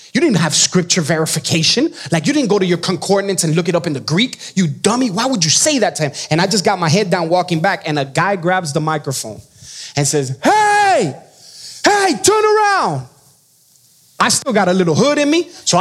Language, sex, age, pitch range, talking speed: English, male, 20-39, 155-215 Hz, 220 wpm